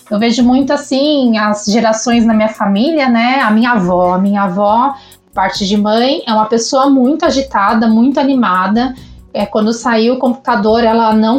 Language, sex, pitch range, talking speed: Portuguese, female, 215-265 Hz, 170 wpm